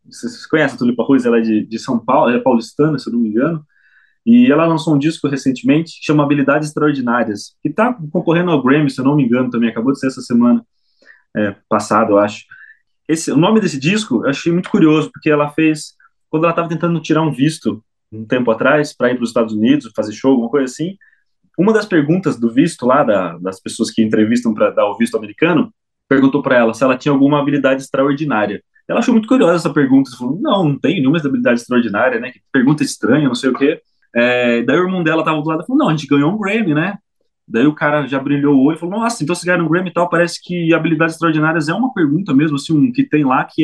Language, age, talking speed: Portuguese, 20-39, 235 wpm